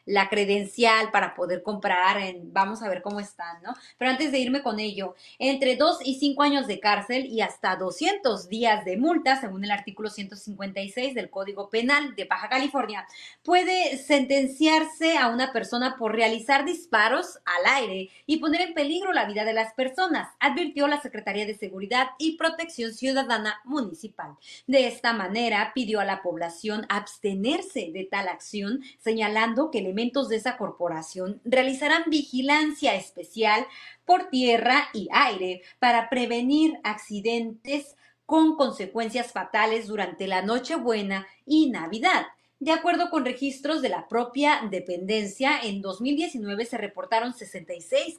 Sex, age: female, 30-49